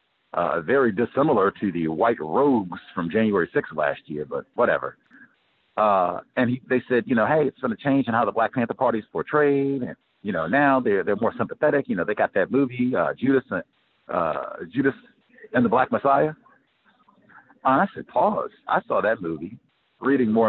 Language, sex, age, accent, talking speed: English, male, 50-69, American, 200 wpm